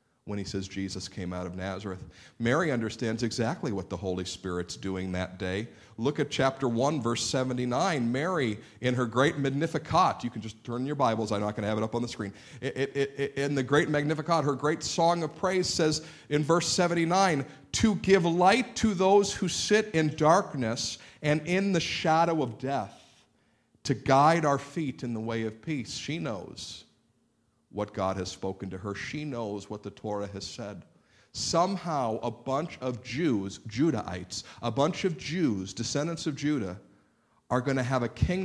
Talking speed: 185 wpm